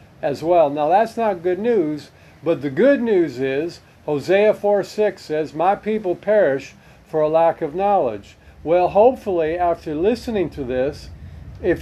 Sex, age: male, 50-69